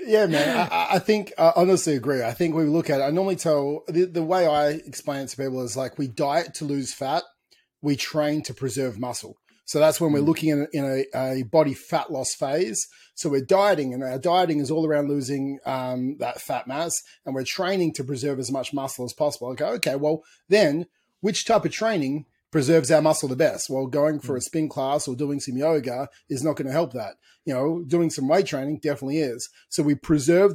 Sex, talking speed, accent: male, 225 wpm, Australian